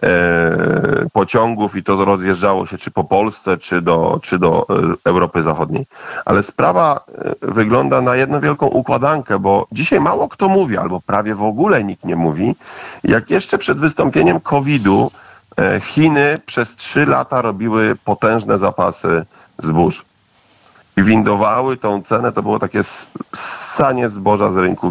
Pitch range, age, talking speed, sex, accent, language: 105-140 Hz, 40-59, 135 wpm, male, native, Polish